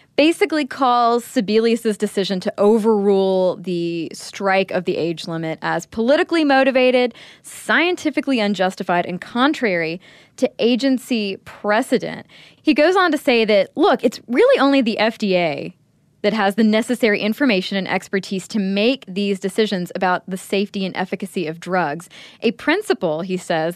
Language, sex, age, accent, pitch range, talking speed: English, female, 20-39, American, 180-245 Hz, 140 wpm